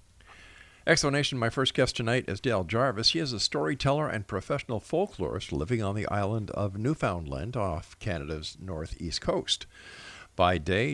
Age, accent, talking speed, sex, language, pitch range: 50-69, American, 150 wpm, male, English, 95-125 Hz